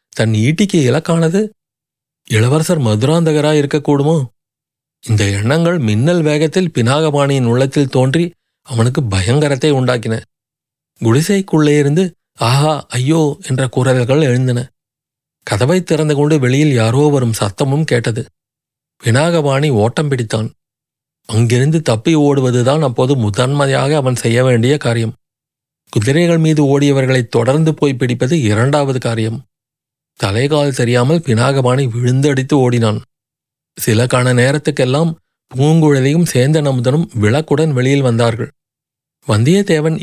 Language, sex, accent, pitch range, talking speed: Tamil, male, native, 120-155 Hz, 95 wpm